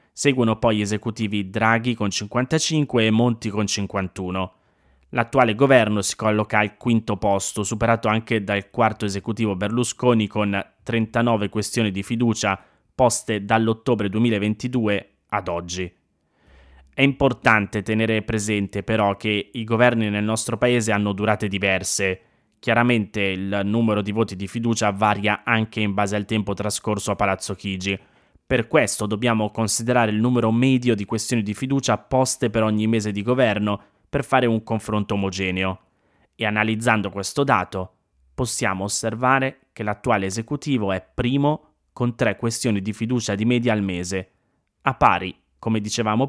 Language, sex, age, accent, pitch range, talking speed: Italian, male, 20-39, native, 100-115 Hz, 145 wpm